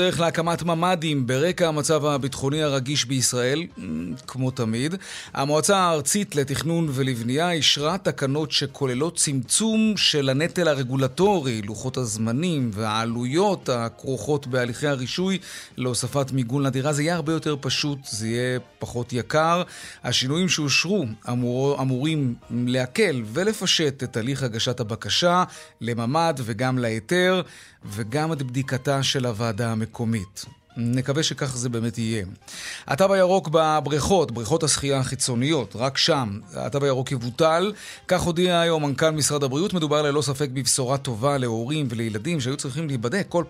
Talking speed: 125 wpm